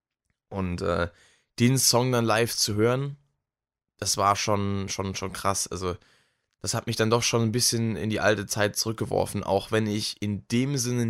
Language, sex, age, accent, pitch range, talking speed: German, male, 10-29, German, 100-120 Hz, 185 wpm